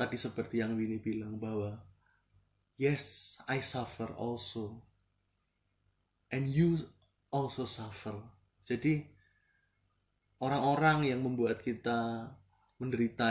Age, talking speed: 20-39, 90 wpm